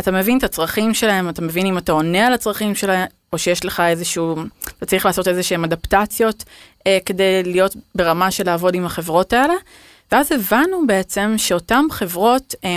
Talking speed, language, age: 175 wpm, Hebrew, 20-39